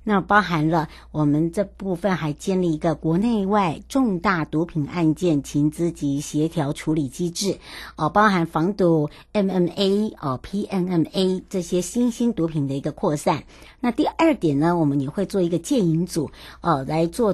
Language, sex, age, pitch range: Chinese, male, 60-79, 160-205 Hz